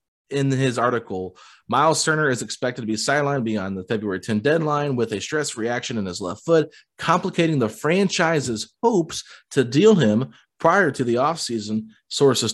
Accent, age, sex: American, 30-49, male